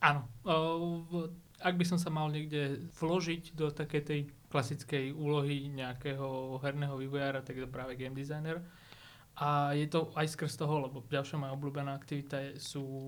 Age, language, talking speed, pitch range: 20-39, Slovak, 155 wpm, 125-145 Hz